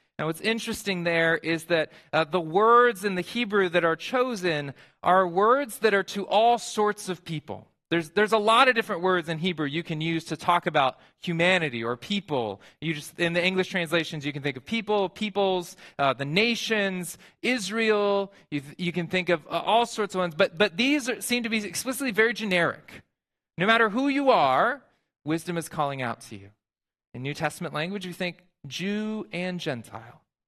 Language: English